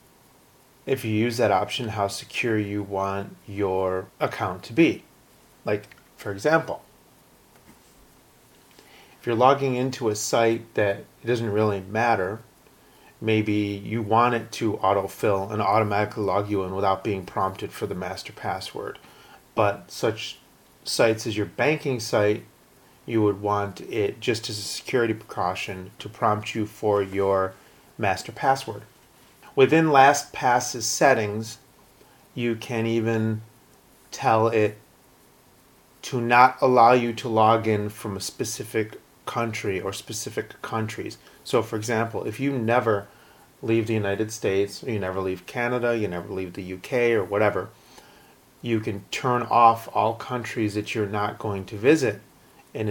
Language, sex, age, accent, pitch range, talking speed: English, male, 30-49, American, 105-115 Hz, 140 wpm